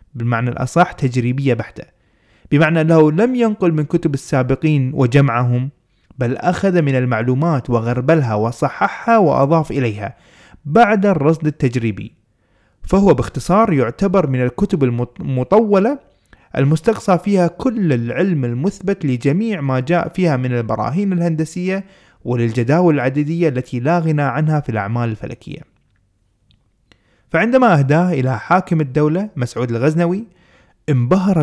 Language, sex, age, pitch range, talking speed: Arabic, male, 20-39, 125-170 Hz, 110 wpm